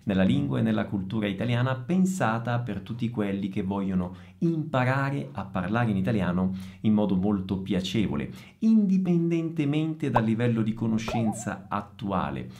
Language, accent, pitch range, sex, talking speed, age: Italian, native, 100-170 Hz, male, 130 wpm, 50-69